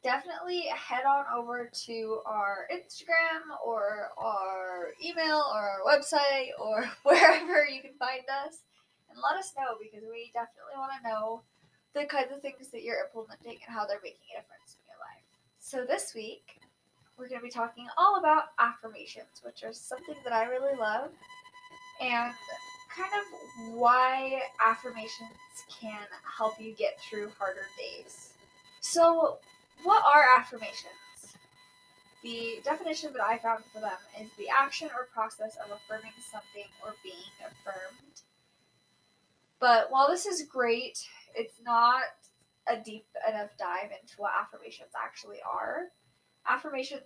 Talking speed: 145 wpm